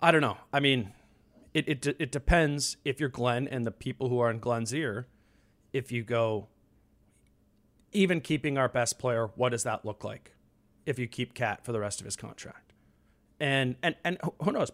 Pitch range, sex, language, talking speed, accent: 115-140 Hz, male, English, 195 wpm, American